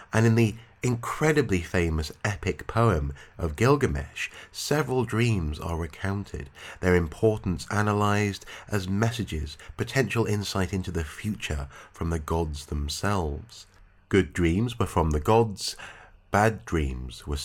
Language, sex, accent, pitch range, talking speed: English, male, British, 80-110 Hz, 125 wpm